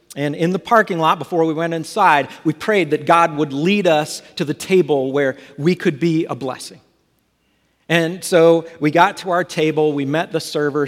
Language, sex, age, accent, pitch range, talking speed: English, male, 50-69, American, 145-180 Hz, 200 wpm